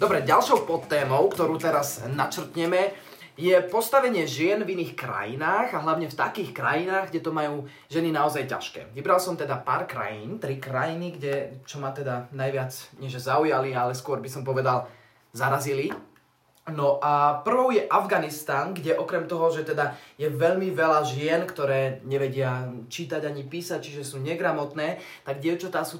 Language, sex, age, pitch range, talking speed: Slovak, male, 20-39, 135-160 Hz, 160 wpm